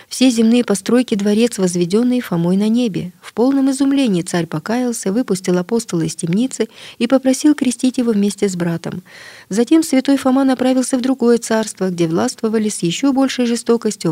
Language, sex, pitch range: Russian, female, 195-250 Hz